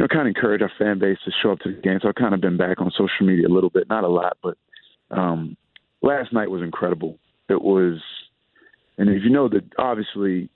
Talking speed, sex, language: 255 wpm, male, English